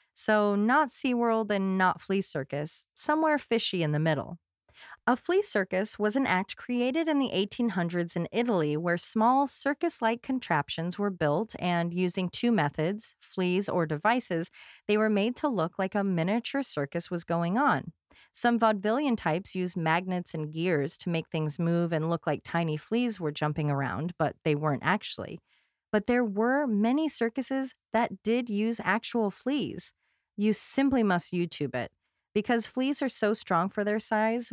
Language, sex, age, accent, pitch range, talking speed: English, female, 30-49, American, 170-230 Hz, 165 wpm